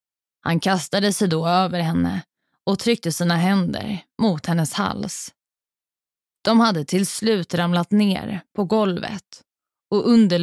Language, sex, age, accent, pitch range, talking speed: Swedish, female, 20-39, native, 175-210 Hz, 130 wpm